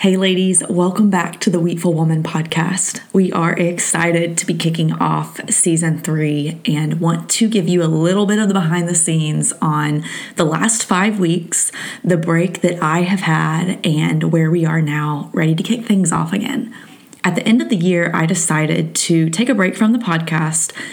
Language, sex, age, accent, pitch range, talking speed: English, female, 20-39, American, 160-190 Hz, 195 wpm